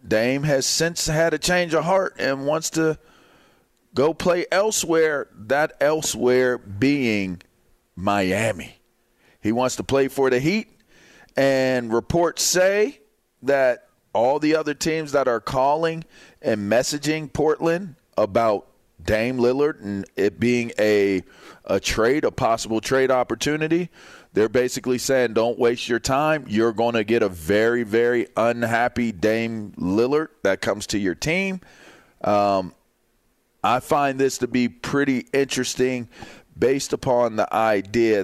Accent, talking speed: American, 135 wpm